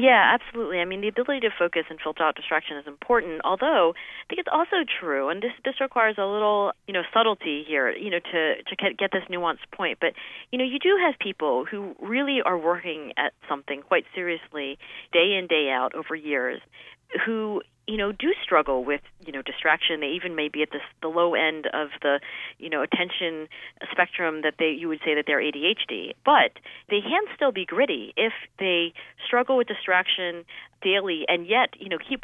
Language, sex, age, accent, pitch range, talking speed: English, female, 40-59, American, 150-200 Hz, 205 wpm